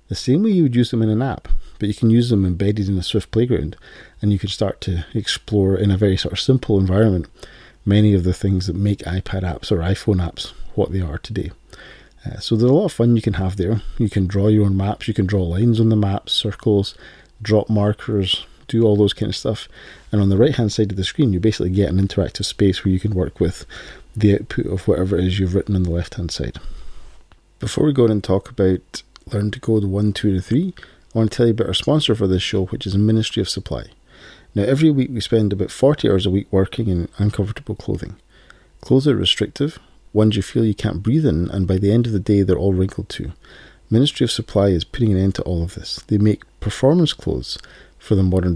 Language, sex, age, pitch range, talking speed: English, male, 30-49, 95-115 Hz, 240 wpm